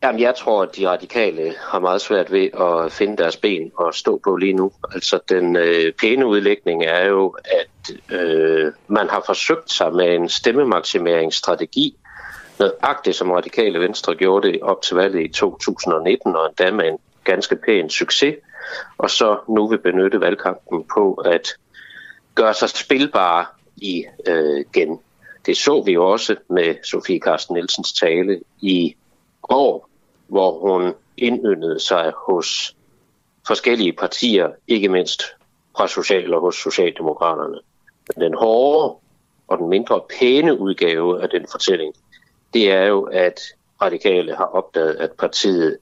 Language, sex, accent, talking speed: Danish, male, native, 145 wpm